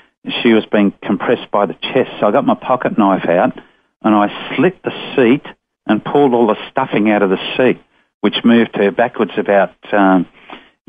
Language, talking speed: English, 185 wpm